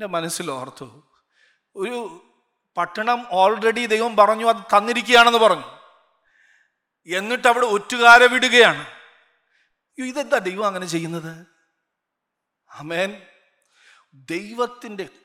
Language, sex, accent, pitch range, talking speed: Malayalam, male, native, 165-235 Hz, 75 wpm